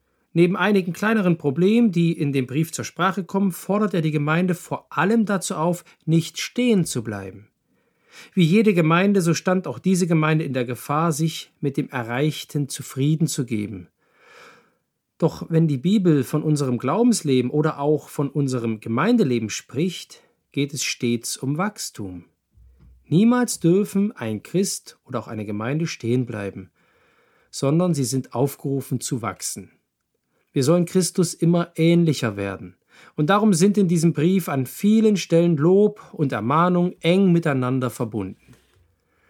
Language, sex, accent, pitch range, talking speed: German, male, German, 125-185 Hz, 145 wpm